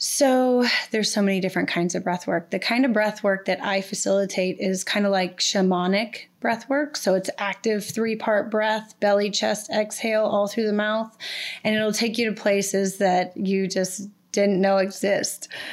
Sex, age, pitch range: female, 20-39, 190-215 Hz